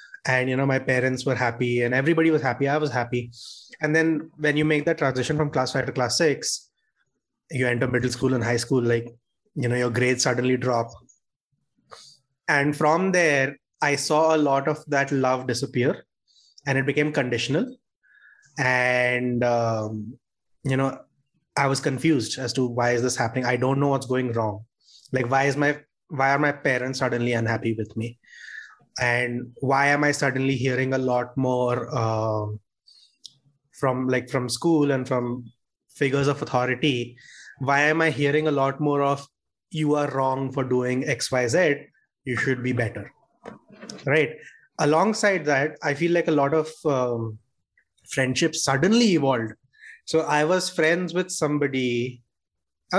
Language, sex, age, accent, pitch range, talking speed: English, male, 20-39, Indian, 125-150 Hz, 165 wpm